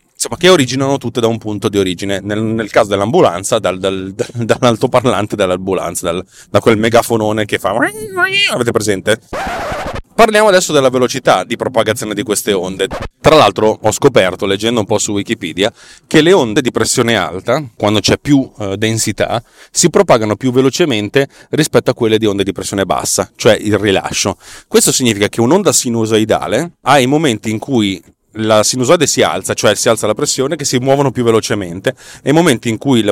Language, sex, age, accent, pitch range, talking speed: Italian, male, 30-49, native, 105-130 Hz, 170 wpm